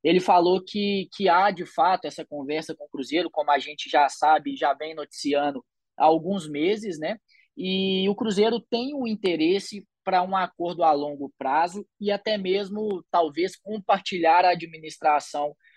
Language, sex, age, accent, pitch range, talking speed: Portuguese, male, 20-39, Brazilian, 150-195 Hz, 170 wpm